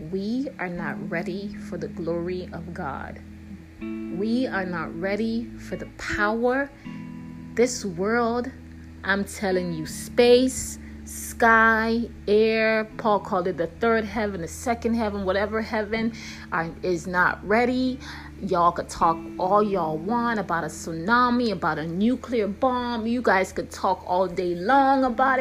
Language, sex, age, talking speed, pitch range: English, female, 30-49, 140 wpm, 185-235 Hz